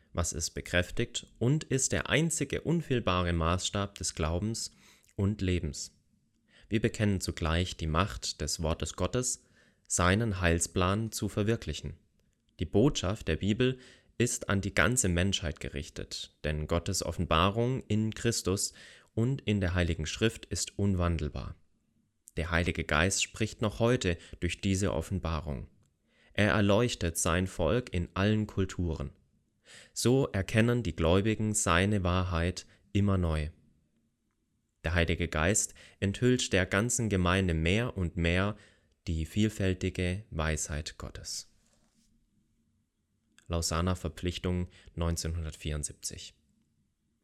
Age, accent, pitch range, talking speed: 30-49, German, 85-105 Hz, 110 wpm